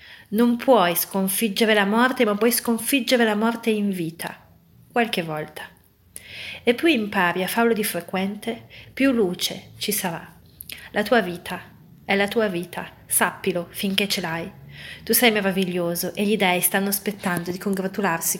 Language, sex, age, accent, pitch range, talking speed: Italian, female, 30-49, native, 180-215 Hz, 150 wpm